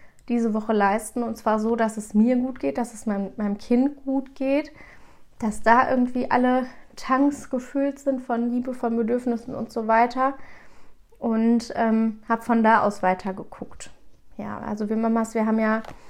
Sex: female